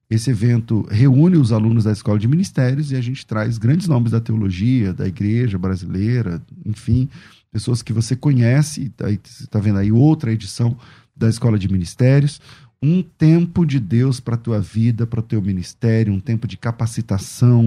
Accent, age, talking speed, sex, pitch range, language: Brazilian, 40-59, 170 wpm, male, 110-135 Hz, Portuguese